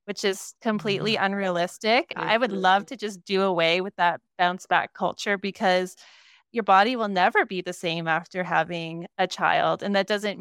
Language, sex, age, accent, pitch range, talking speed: English, female, 20-39, American, 170-195 Hz, 180 wpm